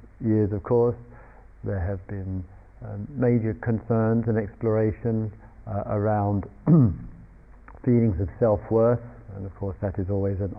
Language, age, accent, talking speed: English, 50-69, British, 125 wpm